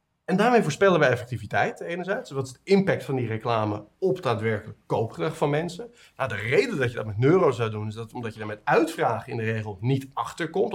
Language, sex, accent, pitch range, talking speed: Dutch, male, Dutch, 120-160 Hz, 230 wpm